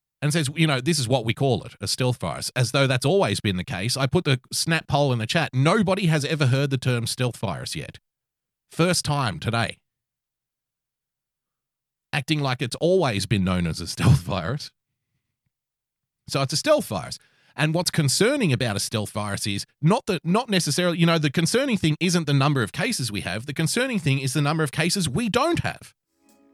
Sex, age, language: male, 30-49, English